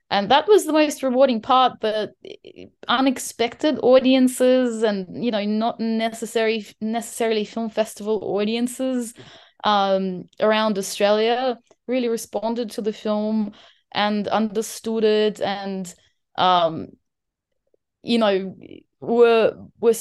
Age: 20-39